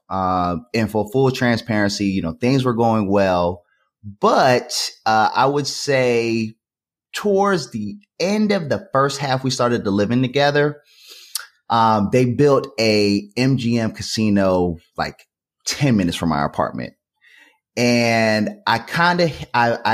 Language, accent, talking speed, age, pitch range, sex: English, American, 130 wpm, 30-49, 100-130 Hz, male